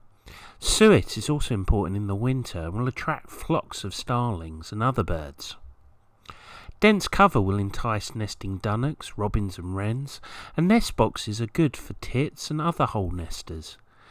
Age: 40-59